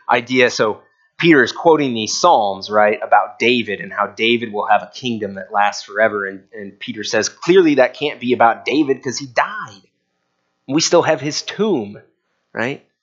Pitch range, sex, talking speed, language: 105-150 Hz, male, 180 wpm, English